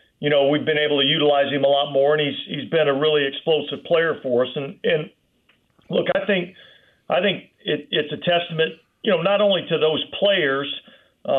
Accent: American